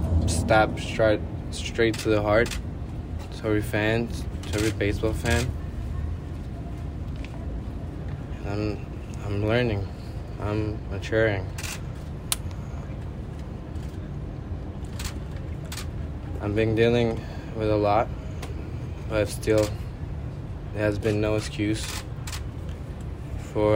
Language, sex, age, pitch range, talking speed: English, male, 20-39, 95-110 Hz, 80 wpm